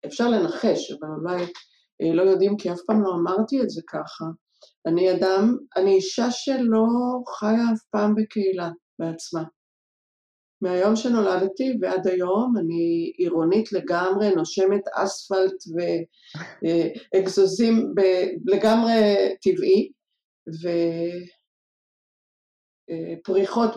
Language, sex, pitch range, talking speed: Hebrew, female, 170-235 Hz, 95 wpm